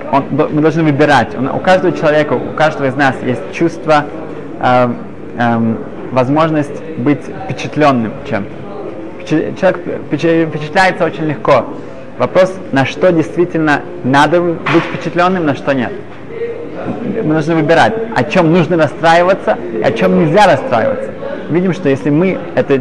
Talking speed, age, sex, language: 125 wpm, 20-39, male, Russian